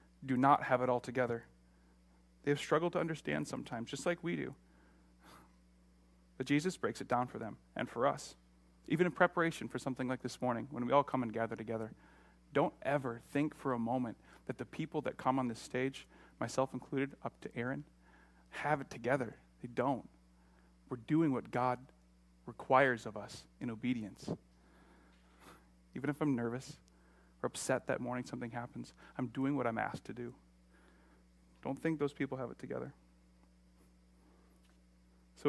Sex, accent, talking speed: male, American, 165 wpm